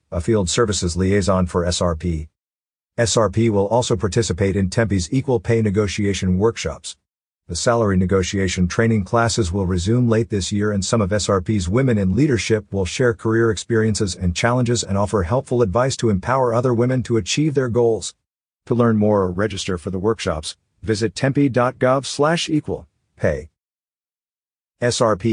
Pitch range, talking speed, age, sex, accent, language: 95-120 Hz, 155 wpm, 50-69, male, American, English